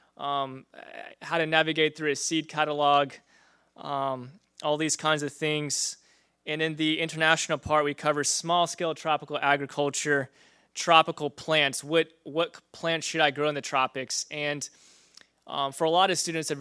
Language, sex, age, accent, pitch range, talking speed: English, male, 20-39, American, 135-155 Hz, 155 wpm